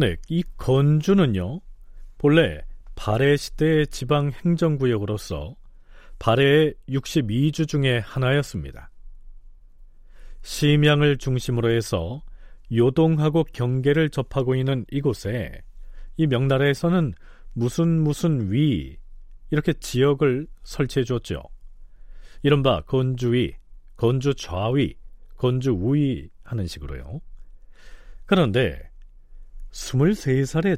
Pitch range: 110-150 Hz